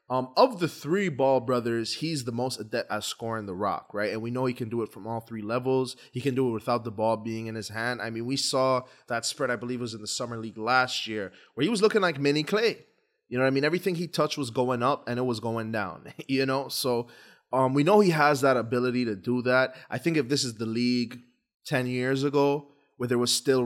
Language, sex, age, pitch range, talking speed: English, male, 20-39, 115-140 Hz, 255 wpm